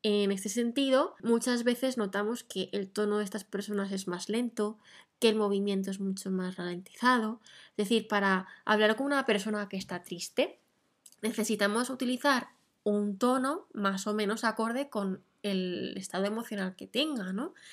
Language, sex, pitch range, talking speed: Spanish, female, 200-250 Hz, 160 wpm